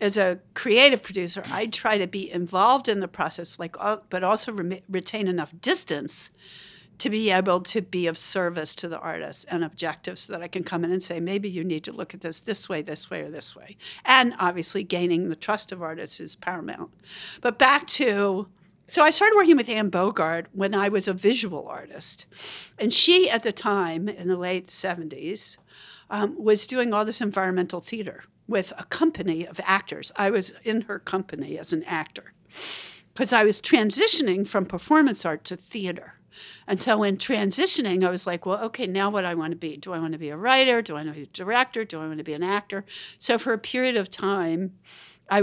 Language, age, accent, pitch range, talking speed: English, 60-79, American, 180-235 Hz, 215 wpm